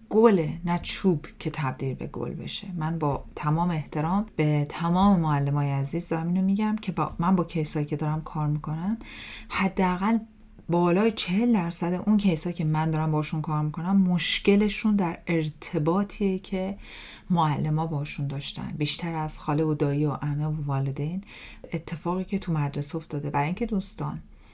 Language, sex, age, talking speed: Persian, female, 40-59, 155 wpm